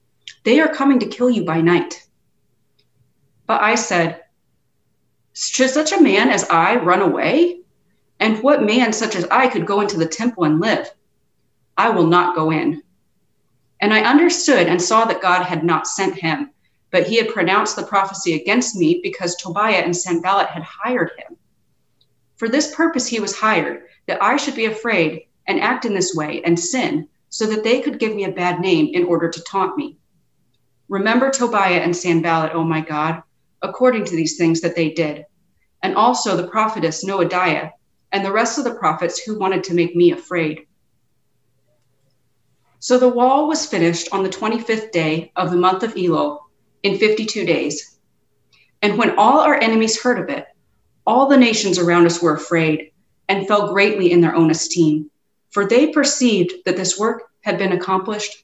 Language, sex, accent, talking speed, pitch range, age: English, female, American, 180 wpm, 170-225 Hz, 30-49